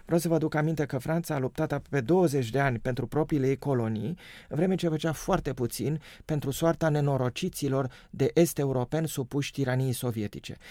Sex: male